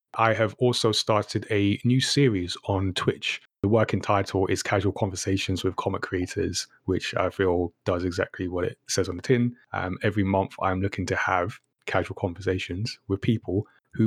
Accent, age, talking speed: British, 30-49, 175 wpm